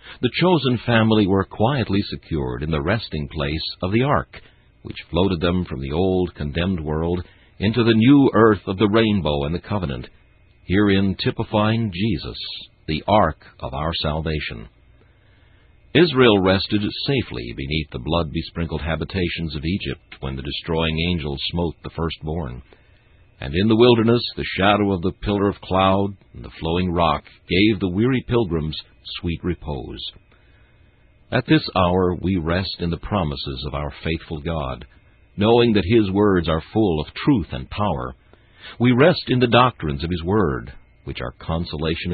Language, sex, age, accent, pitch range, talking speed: English, male, 60-79, American, 80-105 Hz, 155 wpm